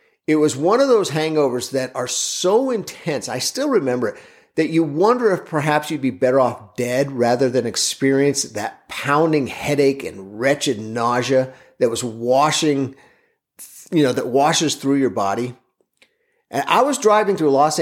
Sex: male